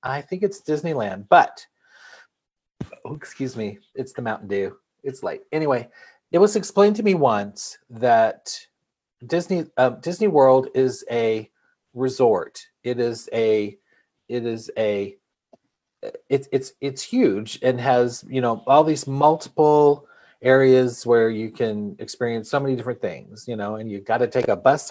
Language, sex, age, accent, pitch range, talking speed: English, male, 40-59, American, 120-150 Hz, 155 wpm